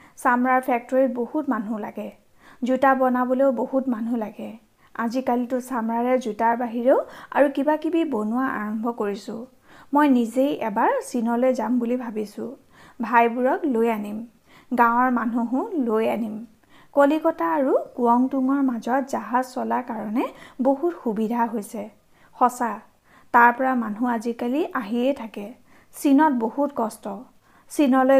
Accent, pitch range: native, 230-270 Hz